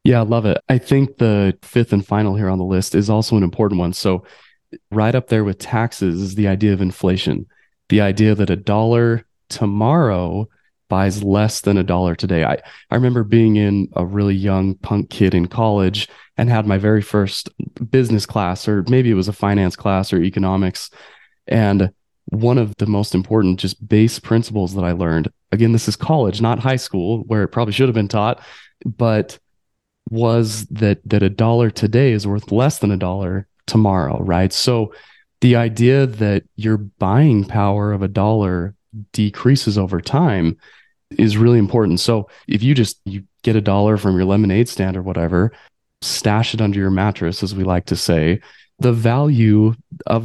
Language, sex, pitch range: English, male, 95-115 Hz